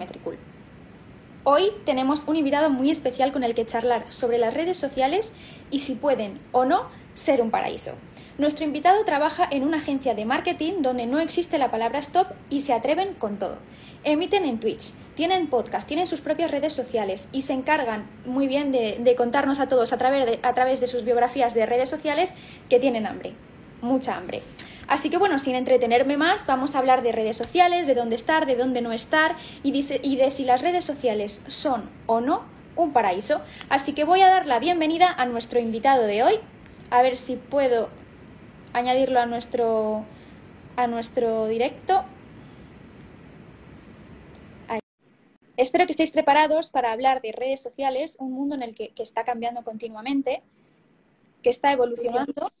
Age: 20-39